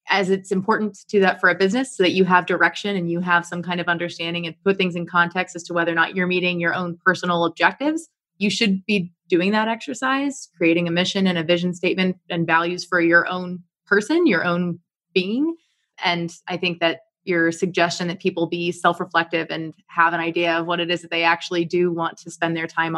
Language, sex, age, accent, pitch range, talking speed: English, female, 20-39, American, 170-190 Hz, 225 wpm